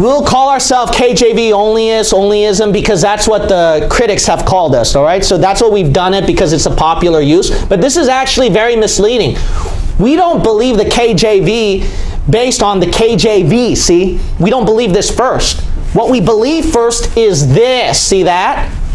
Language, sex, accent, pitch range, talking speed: English, male, American, 180-235 Hz, 180 wpm